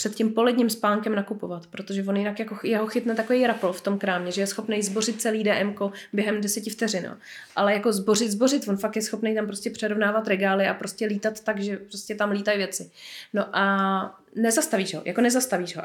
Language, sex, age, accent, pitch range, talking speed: Czech, female, 20-39, native, 195-225 Hz, 200 wpm